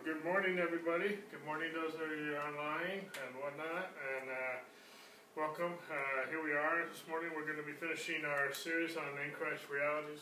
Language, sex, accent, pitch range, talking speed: English, male, American, 130-160 Hz, 190 wpm